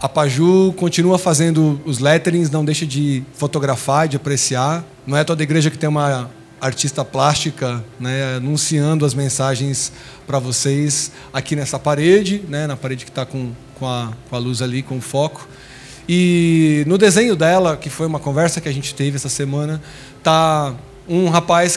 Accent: Brazilian